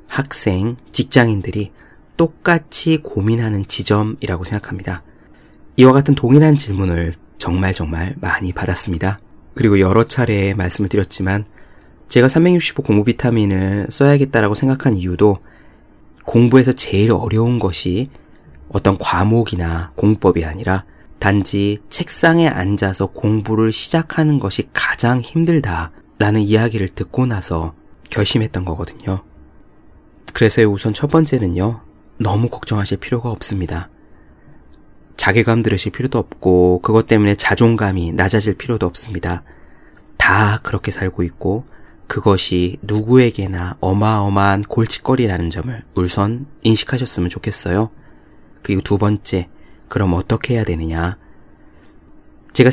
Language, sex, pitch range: Korean, male, 90-115 Hz